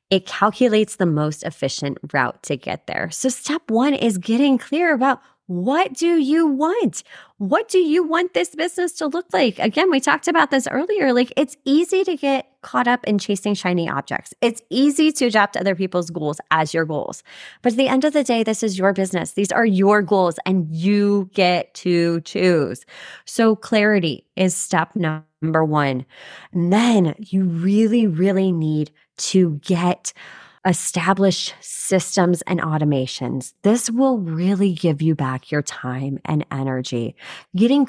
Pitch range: 165-245 Hz